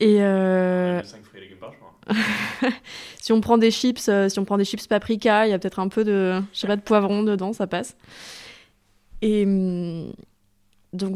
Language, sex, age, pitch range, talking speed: French, female, 20-39, 185-215 Hz, 155 wpm